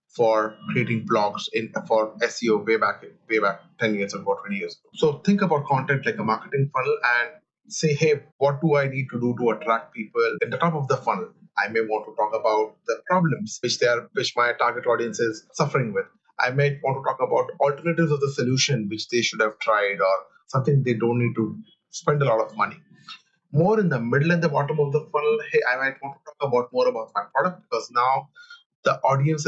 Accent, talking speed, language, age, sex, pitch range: Indian, 230 wpm, English, 30-49, male, 125-180 Hz